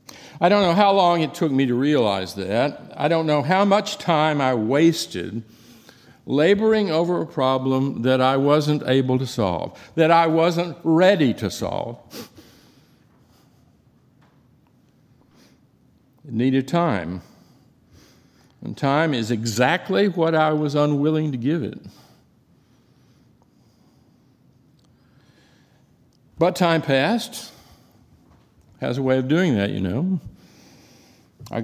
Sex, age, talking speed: male, 60-79, 115 wpm